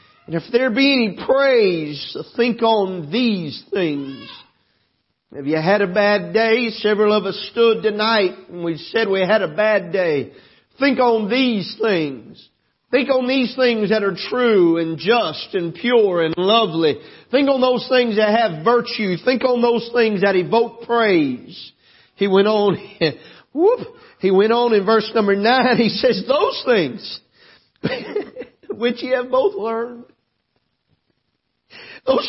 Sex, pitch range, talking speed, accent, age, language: male, 195-250 Hz, 150 wpm, American, 50-69, English